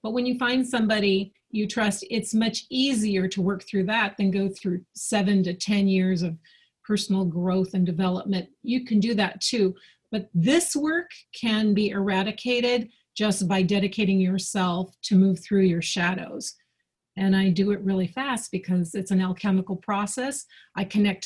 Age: 40-59